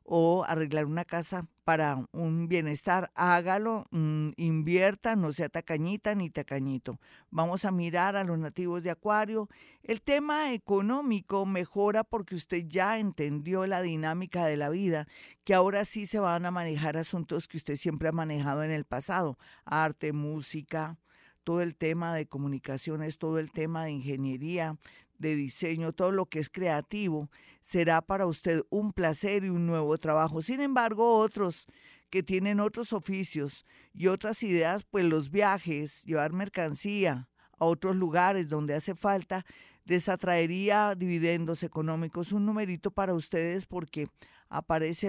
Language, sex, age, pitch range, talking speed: Spanish, female, 50-69, 155-195 Hz, 145 wpm